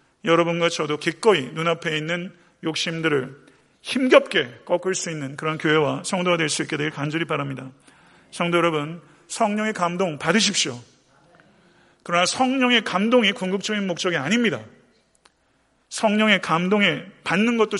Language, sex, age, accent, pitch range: Korean, male, 40-59, native, 145-185 Hz